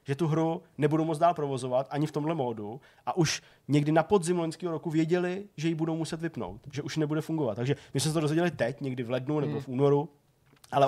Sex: male